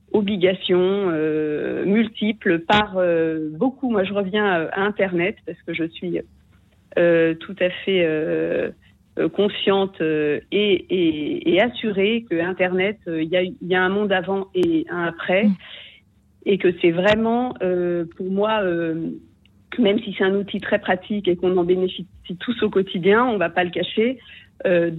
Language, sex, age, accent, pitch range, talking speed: French, female, 40-59, French, 170-215 Hz, 160 wpm